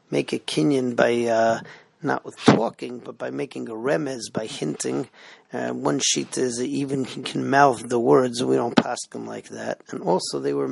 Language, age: English, 40-59